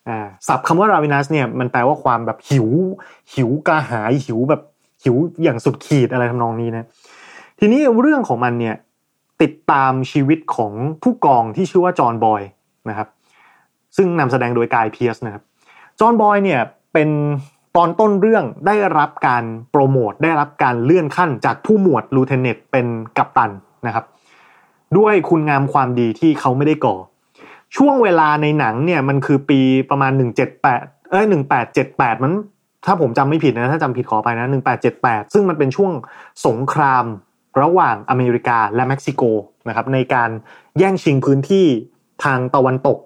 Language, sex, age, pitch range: Thai, male, 20-39, 120-160 Hz